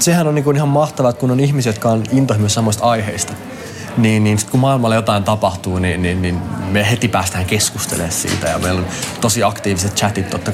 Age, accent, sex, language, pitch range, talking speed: 20-39, native, male, Finnish, 105-145 Hz, 195 wpm